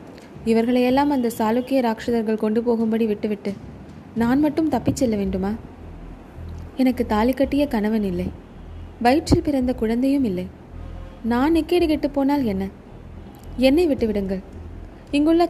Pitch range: 205-270 Hz